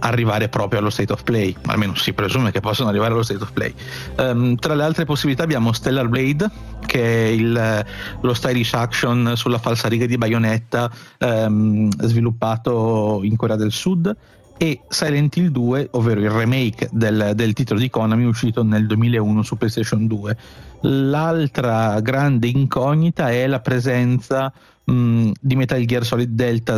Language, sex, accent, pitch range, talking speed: Italian, male, native, 110-130 Hz, 155 wpm